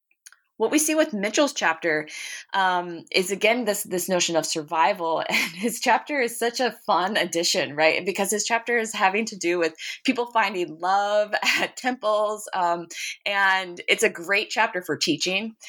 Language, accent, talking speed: English, American, 170 wpm